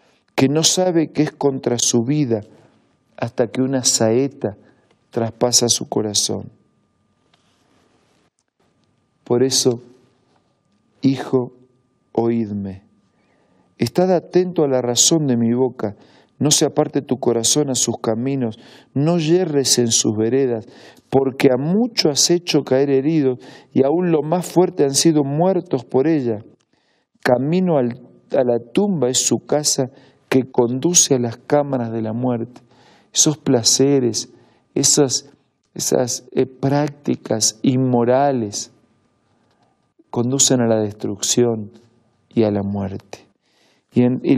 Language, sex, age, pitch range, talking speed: Spanish, male, 50-69, 120-145 Hz, 120 wpm